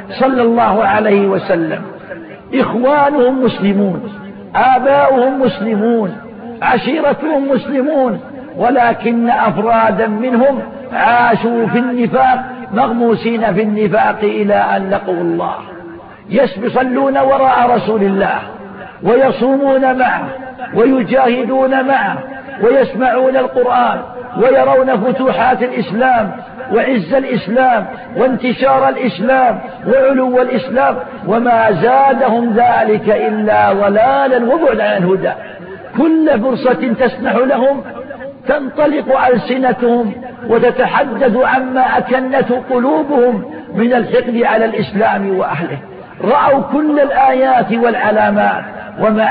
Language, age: Arabic, 50-69